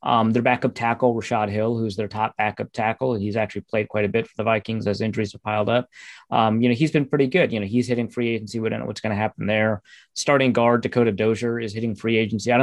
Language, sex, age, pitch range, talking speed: Hungarian, male, 30-49, 110-130 Hz, 265 wpm